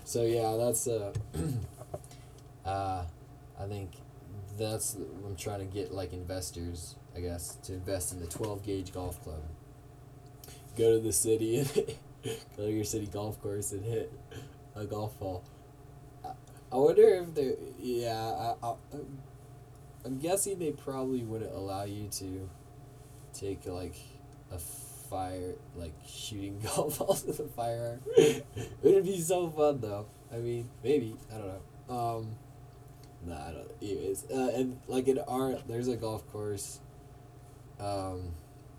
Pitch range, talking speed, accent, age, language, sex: 100-135 Hz, 140 wpm, American, 20-39, English, male